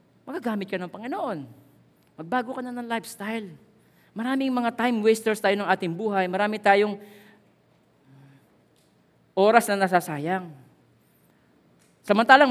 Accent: native